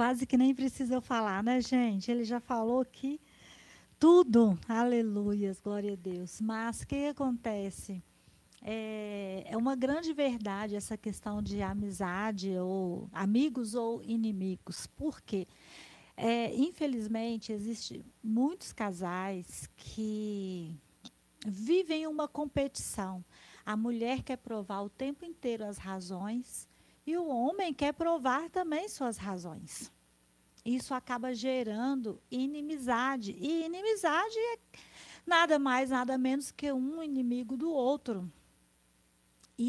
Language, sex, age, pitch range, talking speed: Portuguese, female, 40-59, 205-270 Hz, 120 wpm